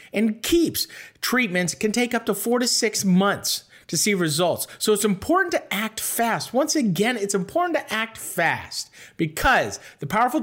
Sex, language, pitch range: male, English, 170-250 Hz